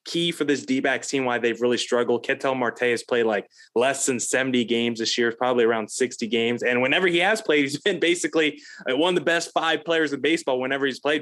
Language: English